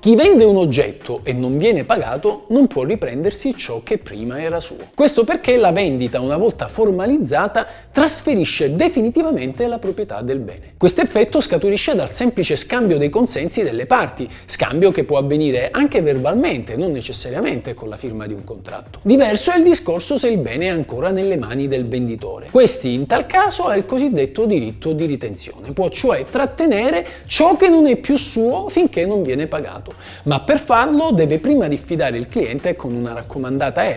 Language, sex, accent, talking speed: Italian, male, native, 175 wpm